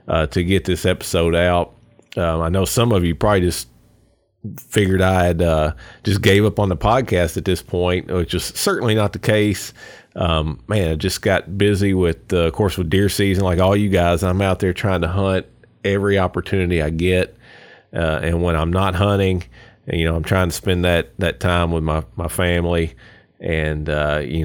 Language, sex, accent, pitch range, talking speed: English, male, American, 80-95 Hz, 200 wpm